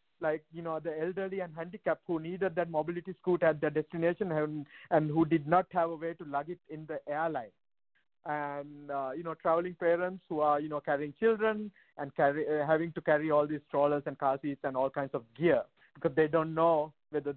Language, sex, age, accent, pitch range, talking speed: English, male, 50-69, Indian, 150-180 Hz, 220 wpm